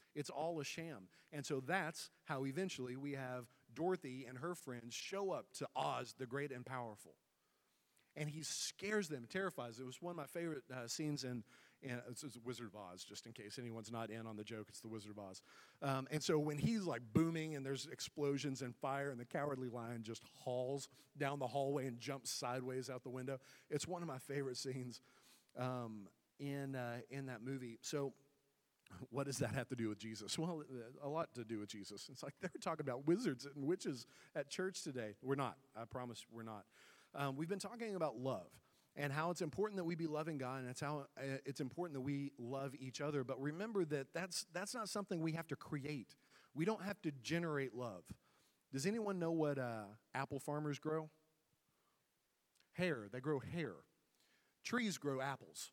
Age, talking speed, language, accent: 40-59, 200 wpm, English, American